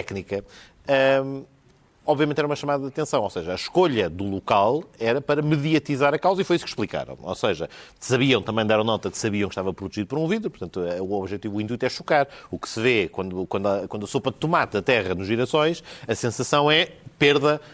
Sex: male